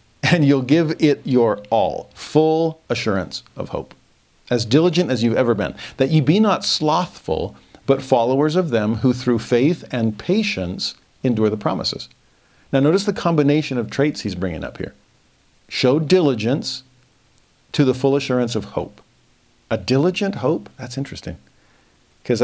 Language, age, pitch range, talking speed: English, 50-69, 115-150 Hz, 150 wpm